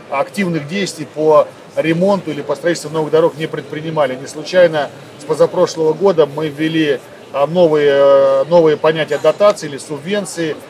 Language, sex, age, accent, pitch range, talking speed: Russian, male, 40-59, native, 150-185 Hz, 135 wpm